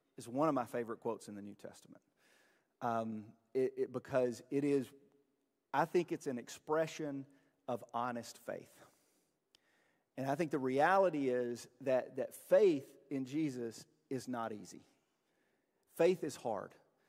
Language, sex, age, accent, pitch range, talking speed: English, male, 40-59, American, 145-195 Hz, 135 wpm